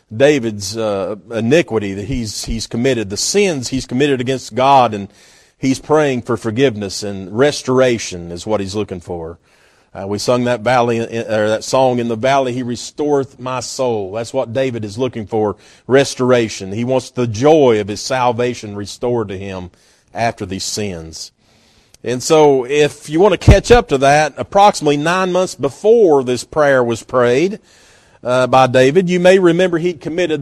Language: English